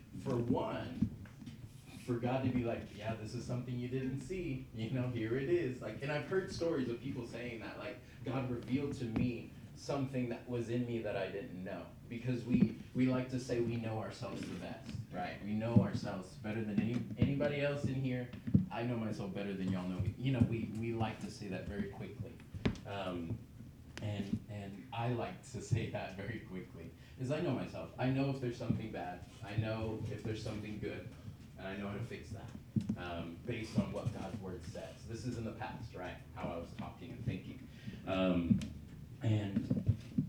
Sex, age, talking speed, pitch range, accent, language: male, 30-49, 205 wpm, 105-125 Hz, American, English